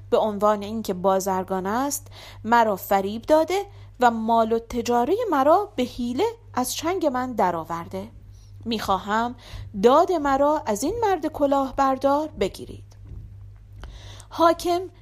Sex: female